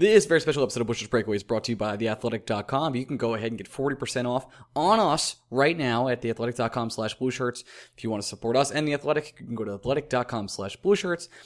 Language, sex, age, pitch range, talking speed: English, male, 20-39, 110-135 Hz, 235 wpm